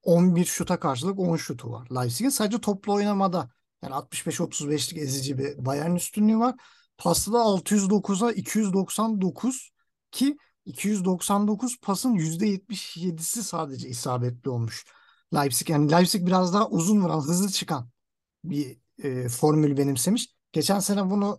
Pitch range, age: 150-205 Hz, 50-69